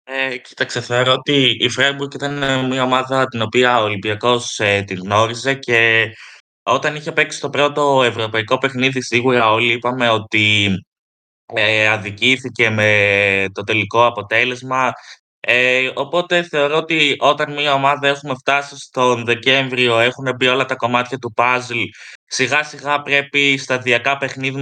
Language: Greek